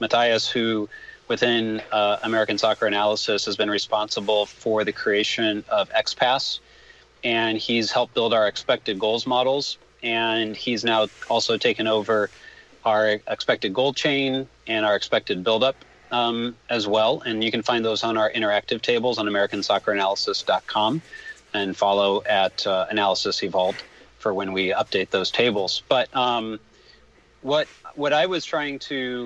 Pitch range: 110-130 Hz